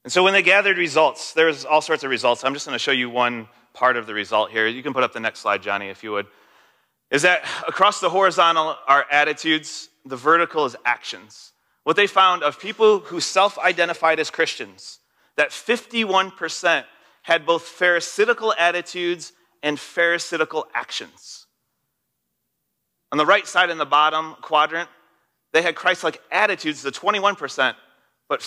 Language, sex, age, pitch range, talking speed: English, male, 30-49, 145-180 Hz, 165 wpm